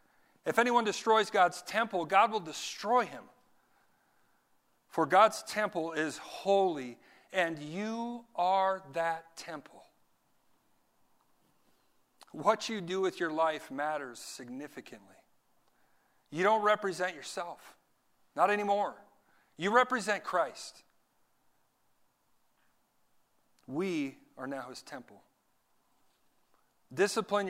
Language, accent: English, American